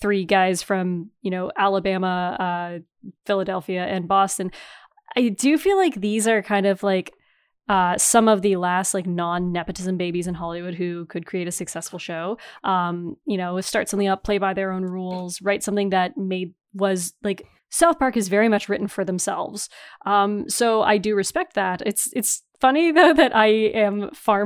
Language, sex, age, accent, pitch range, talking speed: English, female, 20-39, American, 185-215 Hz, 180 wpm